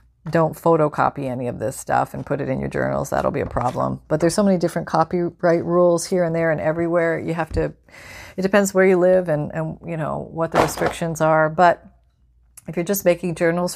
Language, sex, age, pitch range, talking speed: English, female, 40-59, 135-180 Hz, 220 wpm